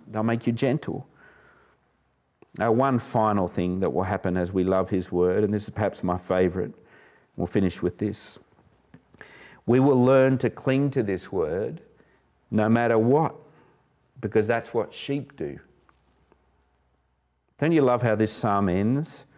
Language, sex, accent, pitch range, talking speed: English, male, Australian, 105-135 Hz, 150 wpm